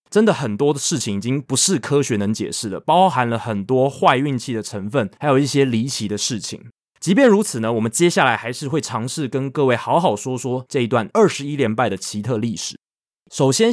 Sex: male